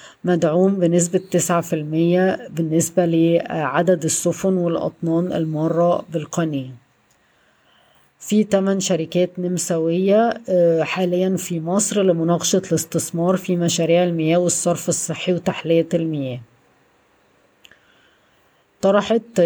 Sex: female